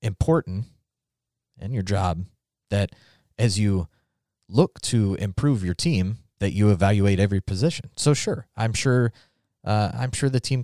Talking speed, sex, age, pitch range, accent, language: 145 wpm, male, 30-49, 95-120 Hz, American, English